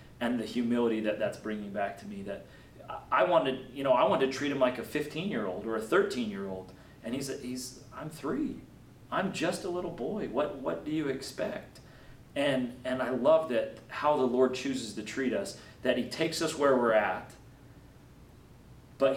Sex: male